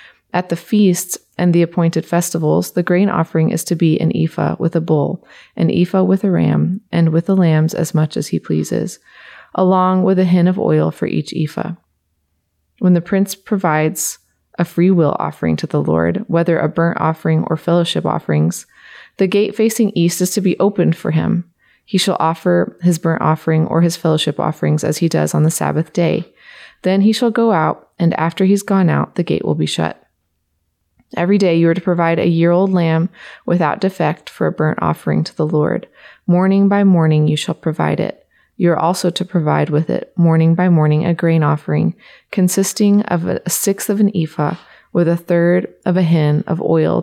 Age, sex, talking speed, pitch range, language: 30-49, female, 195 wpm, 160-185 Hz, English